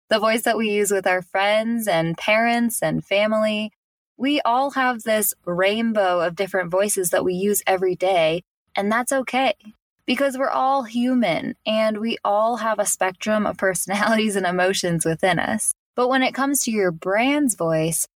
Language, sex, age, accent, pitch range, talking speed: English, female, 10-29, American, 170-230 Hz, 170 wpm